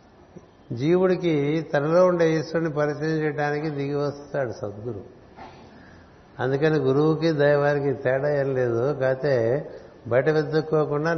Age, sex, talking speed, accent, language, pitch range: 60-79, male, 95 wpm, native, Telugu, 130-150 Hz